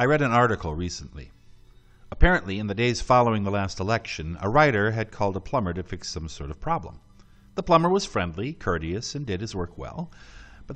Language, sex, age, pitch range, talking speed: English, male, 50-69, 95-150 Hz, 200 wpm